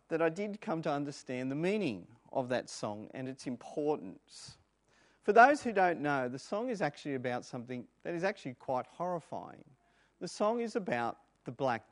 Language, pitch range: English, 145-205 Hz